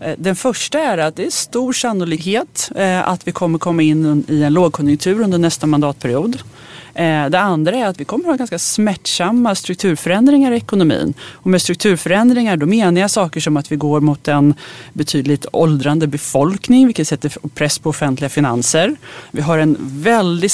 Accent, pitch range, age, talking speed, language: native, 145-190 Hz, 30-49, 165 wpm, Swedish